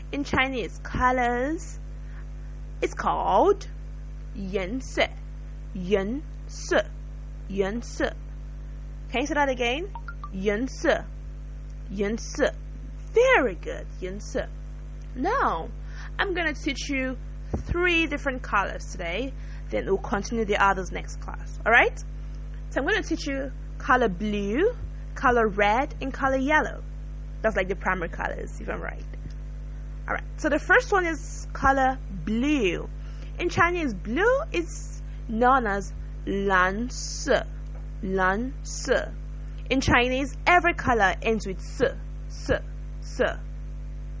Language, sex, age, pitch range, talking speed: English, female, 20-39, 195-285 Hz, 115 wpm